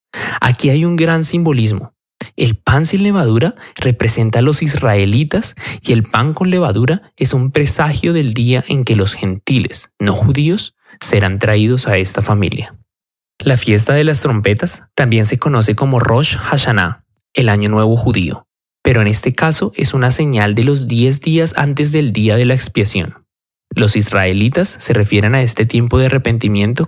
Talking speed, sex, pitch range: 165 wpm, male, 105-135 Hz